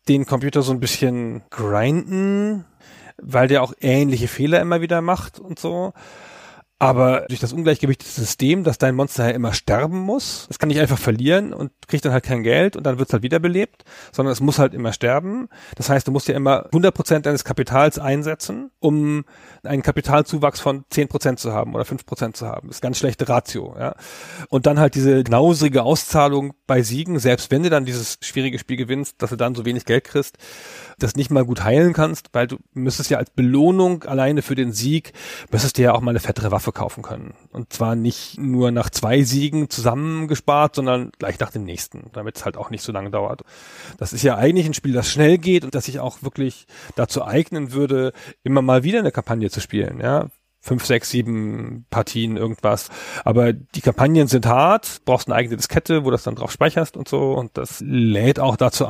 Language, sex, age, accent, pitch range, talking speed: German, male, 40-59, German, 120-150 Hz, 205 wpm